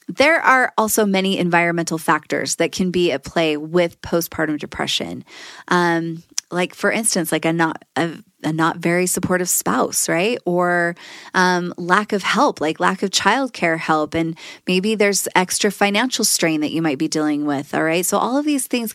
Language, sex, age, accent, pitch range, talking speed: English, female, 20-39, American, 165-205 Hz, 180 wpm